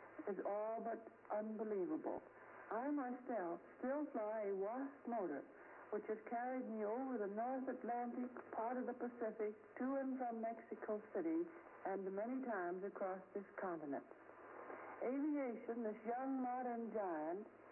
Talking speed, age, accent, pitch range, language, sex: 130 wpm, 60-79, American, 210-265 Hz, English, female